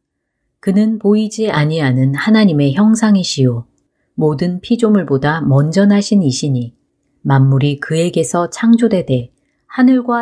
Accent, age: native, 40-59